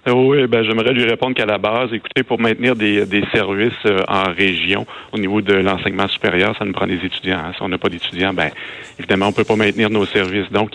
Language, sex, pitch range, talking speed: French, male, 90-110 Hz, 235 wpm